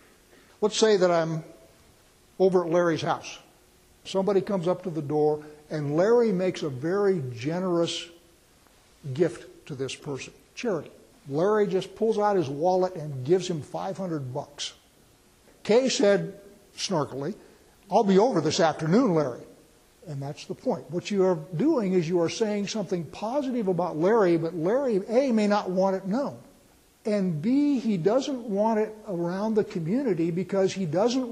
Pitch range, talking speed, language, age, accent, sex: 165-215 Hz, 155 wpm, English, 60-79, American, male